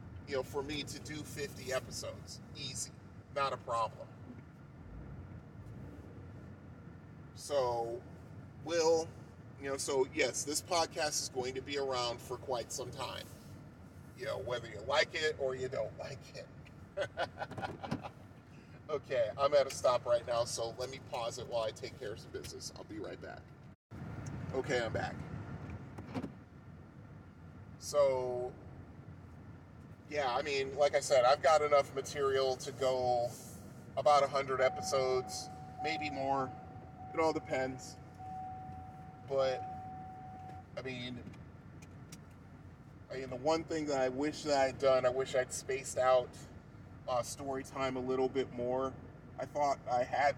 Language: English